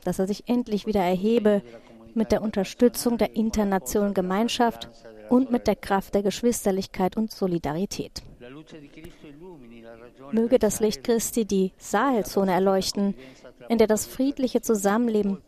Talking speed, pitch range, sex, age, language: 125 wpm, 175-225 Hz, female, 30-49, German